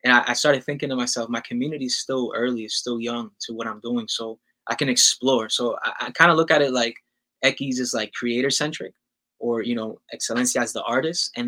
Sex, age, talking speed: male, 20-39, 225 wpm